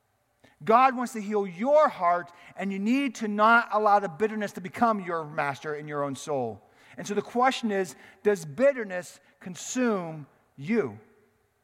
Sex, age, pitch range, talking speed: male, 40-59, 145-230 Hz, 160 wpm